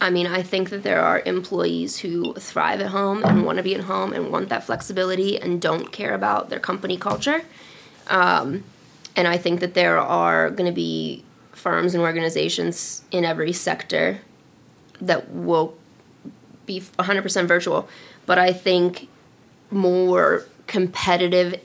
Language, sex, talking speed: English, female, 150 wpm